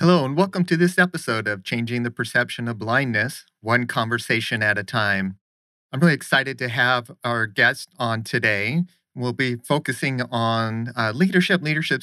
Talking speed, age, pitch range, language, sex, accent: 165 wpm, 40-59, 110-130 Hz, English, male, American